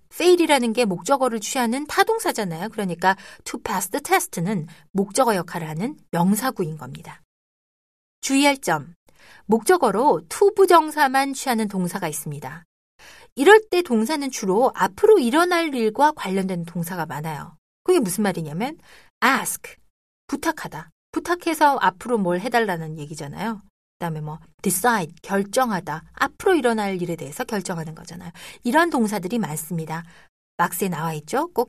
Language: Korean